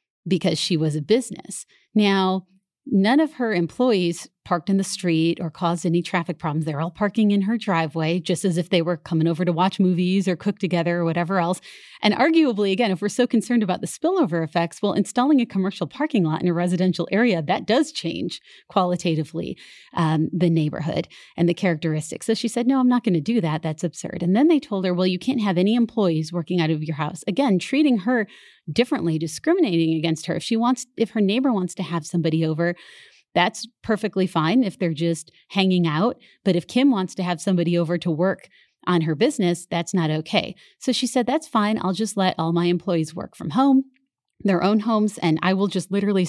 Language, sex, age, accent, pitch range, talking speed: English, female, 30-49, American, 170-220 Hz, 215 wpm